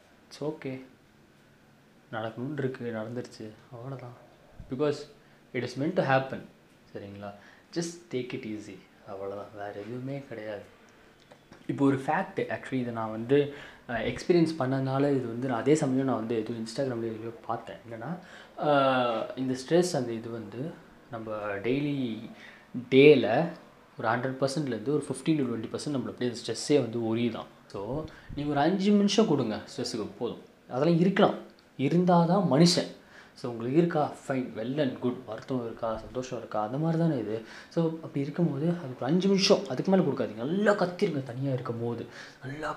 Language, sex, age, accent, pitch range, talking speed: Tamil, male, 20-39, native, 120-155 Hz, 145 wpm